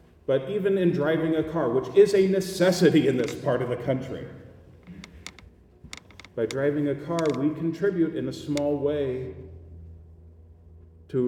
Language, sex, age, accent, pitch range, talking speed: English, male, 40-59, American, 95-150 Hz, 145 wpm